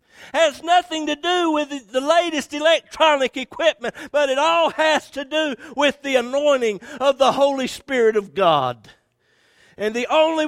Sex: male